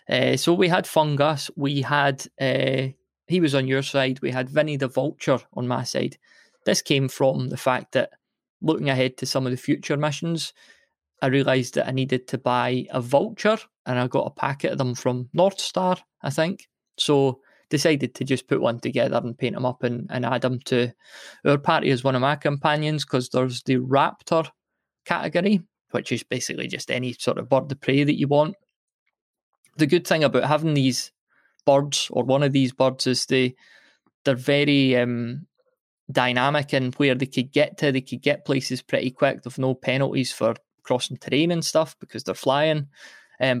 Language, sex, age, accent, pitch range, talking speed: English, male, 20-39, British, 130-150 Hz, 190 wpm